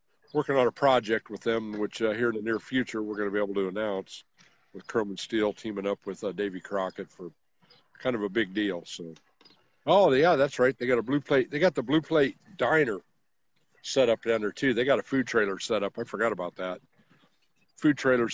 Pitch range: 100-130 Hz